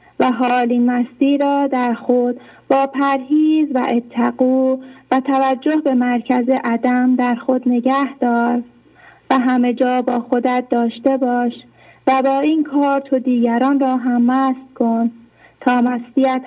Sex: female